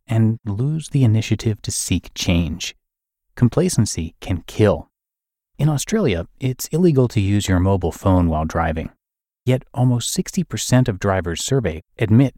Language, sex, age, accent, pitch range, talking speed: English, male, 30-49, American, 90-125 Hz, 135 wpm